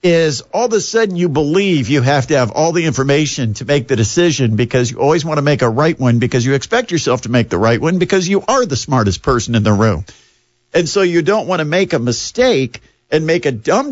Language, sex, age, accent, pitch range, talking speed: English, male, 50-69, American, 120-170 Hz, 250 wpm